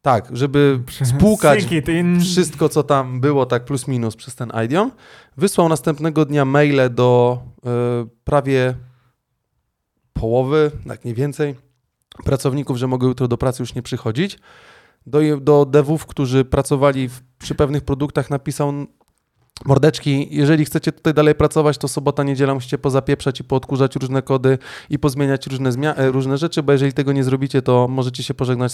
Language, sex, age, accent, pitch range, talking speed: Polish, male, 20-39, native, 125-150 Hz, 150 wpm